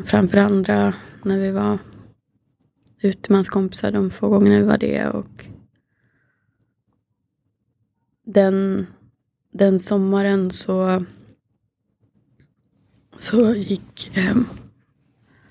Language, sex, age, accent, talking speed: Swedish, female, 20-39, native, 75 wpm